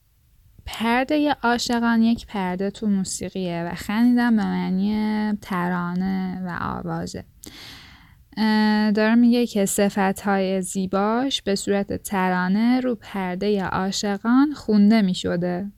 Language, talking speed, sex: Persian, 105 wpm, female